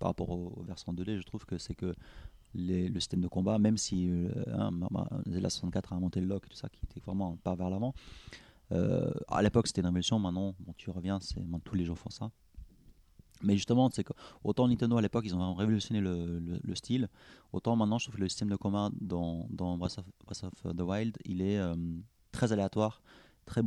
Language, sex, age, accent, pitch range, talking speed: French, male, 30-49, French, 90-110 Hz, 230 wpm